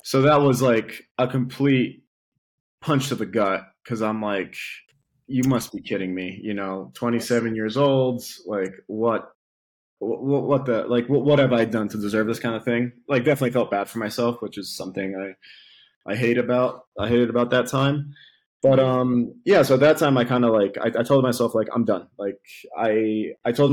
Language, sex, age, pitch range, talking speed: English, male, 20-39, 110-130 Hz, 200 wpm